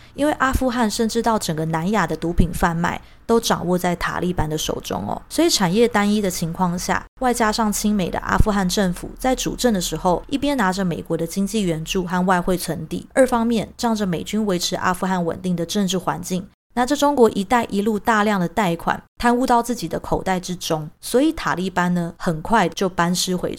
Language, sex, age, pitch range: Chinese, female, 20-39, 175-220 Hz